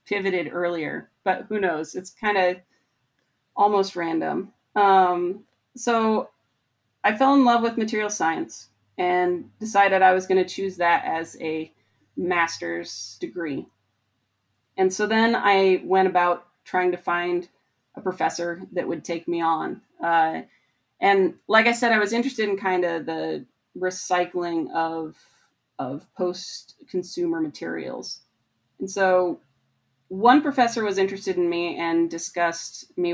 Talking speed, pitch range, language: 140 wpm, 165-205 Hz, English